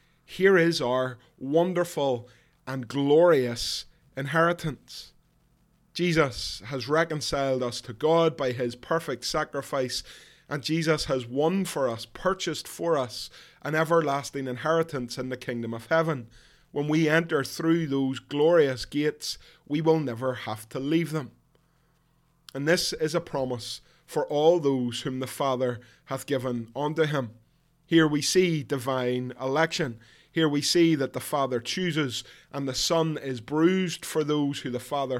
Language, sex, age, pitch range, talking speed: English, male, 20-39, 125-160 Hz, 145 wpm